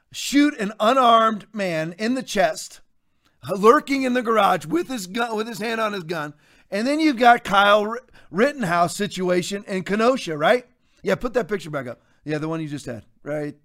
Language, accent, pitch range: English, American, 160-225 Hz